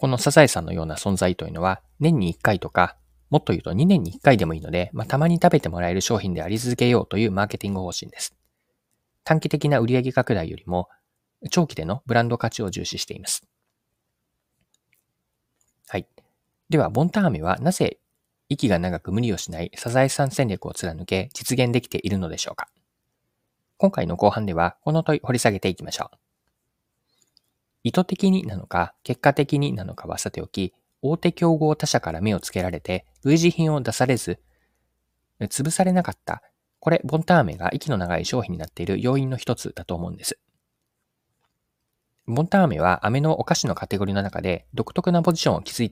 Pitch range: 90-150 Hz